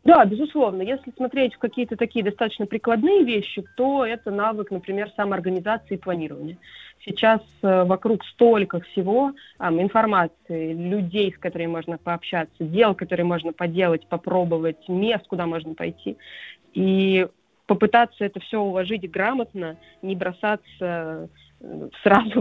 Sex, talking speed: female, 120 wpm